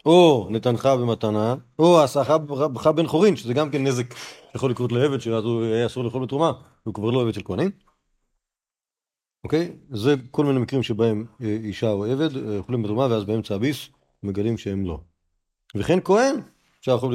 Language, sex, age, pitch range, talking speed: Hebrew, male, 40-59, 105-140 Hz, 160 wpm